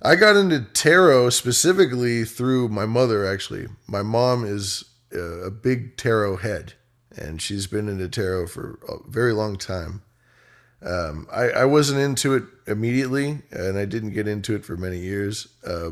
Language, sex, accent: English, male, American